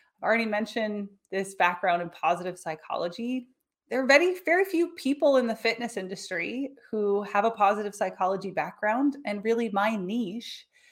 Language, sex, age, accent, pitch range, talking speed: English, female, 20-39, American, 195-260 Hz, 150 wpm